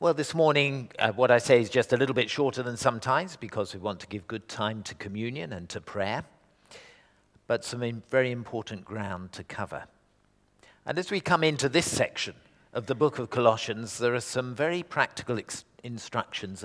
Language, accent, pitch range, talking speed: English, British, 110-150 Hz, 185 wpm